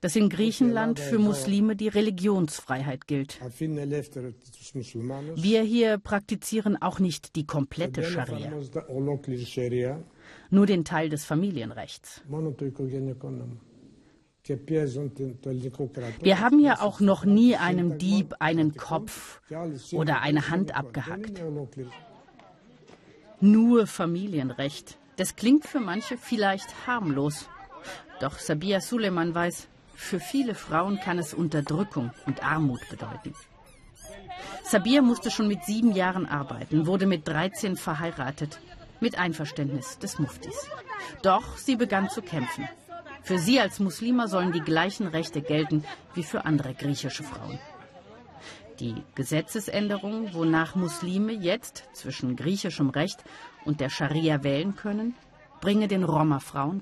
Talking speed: 110 wpm